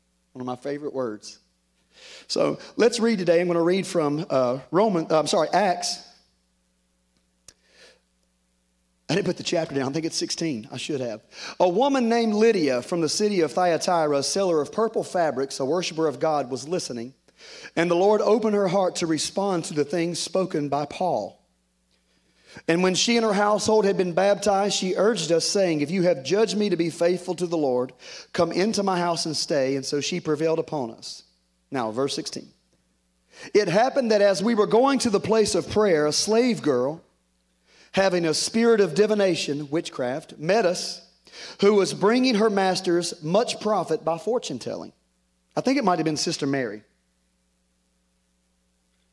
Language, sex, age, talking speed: English, male, 40-59, 180 wpm